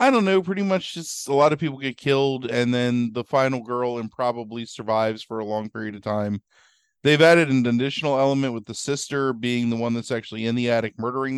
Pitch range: 110-135 Hz